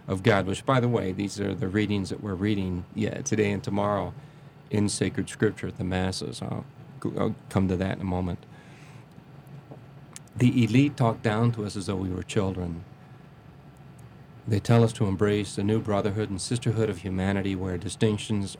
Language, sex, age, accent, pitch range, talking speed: English, male, 40-59, American, 100-140 Hz, 185 wpm